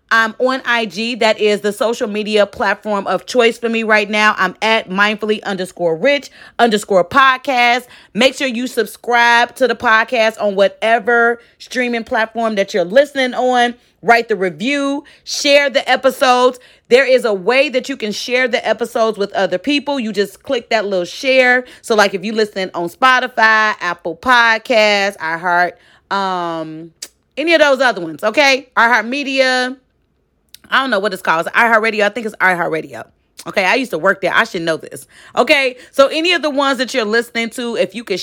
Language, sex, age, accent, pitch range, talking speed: English, female, 30-49, American, 210-255 Hz, 185 wpm